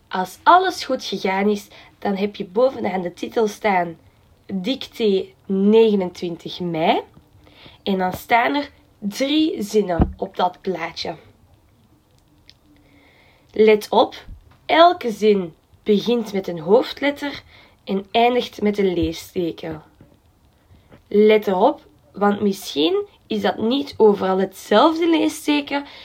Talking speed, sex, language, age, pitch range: 110 wpm, female, Dutch, 20-39, 180-235 Hz